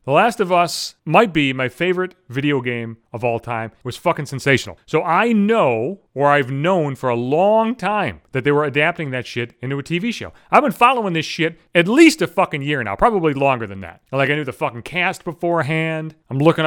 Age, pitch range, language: 30-49, 145-230 Hz, English